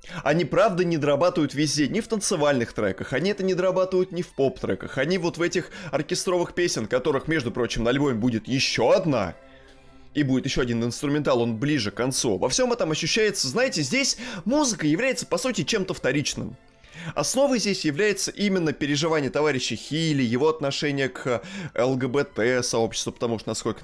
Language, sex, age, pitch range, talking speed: Russian, male, 20-39, 110-160 Hz, 165 wpm